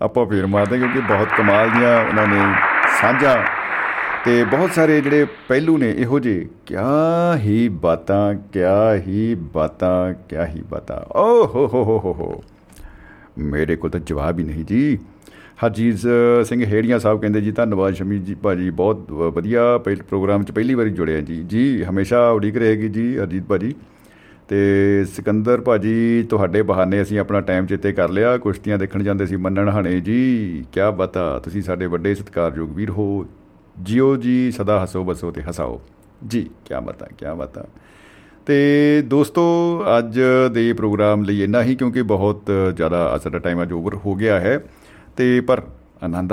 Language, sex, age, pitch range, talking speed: Punjabi, male, 50-69, 95-120 Hz, 160 wpm